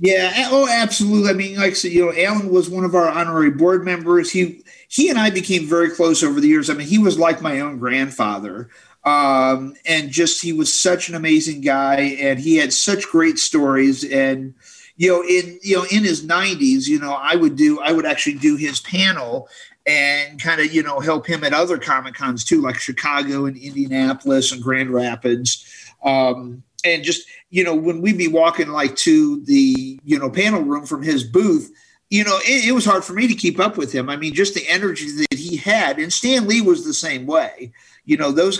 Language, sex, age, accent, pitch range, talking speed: English, male, 50-69, American, 140-210 Hz, 220 wpm